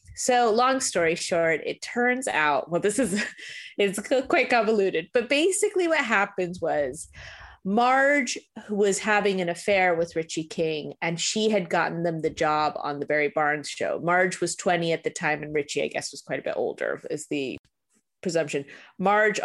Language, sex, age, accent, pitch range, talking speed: English, female, 30-49, American, 160-210 Hz, 175 wpm